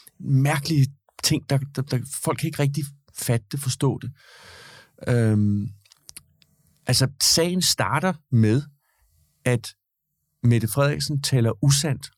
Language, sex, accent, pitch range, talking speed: Danish, male, native, 105-135 Hz, 115 wpm